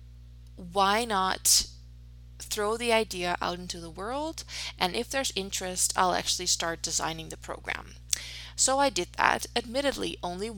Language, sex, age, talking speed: Dutch, female, 20-39, 140 wpm